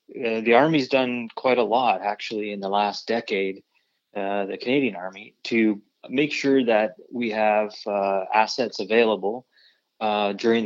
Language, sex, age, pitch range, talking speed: English, male, 20-39, 105-115 Hz, 150 wpm